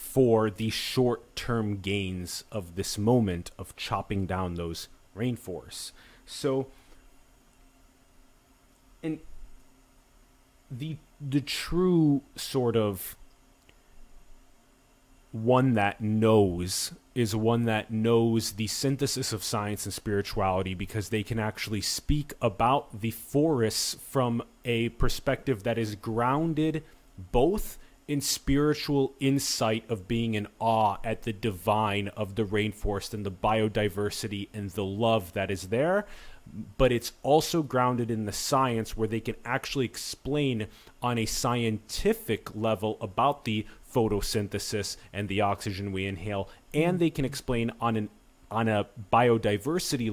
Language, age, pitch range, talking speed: English, 30-49, 105-130 Hz, 120 wpm